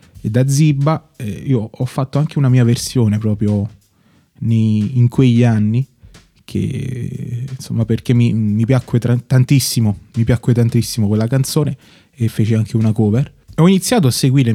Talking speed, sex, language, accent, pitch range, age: 140 wpm, male, Italian, native, 110-130 Hz, 20-39